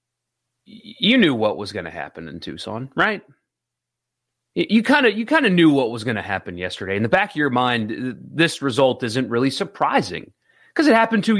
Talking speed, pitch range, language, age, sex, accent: 200 wpm, 120-165 Hz, English, 30-49, male, American